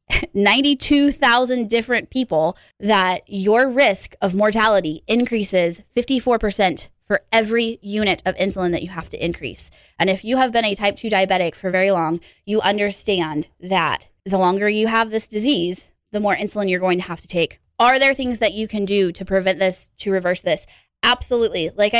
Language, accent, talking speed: English, American, 175 wpm